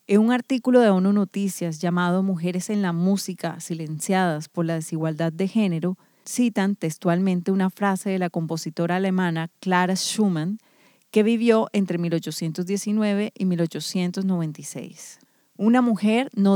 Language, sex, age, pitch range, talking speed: Spanish, female, 30-49, 175-210 Hz, 130 wpm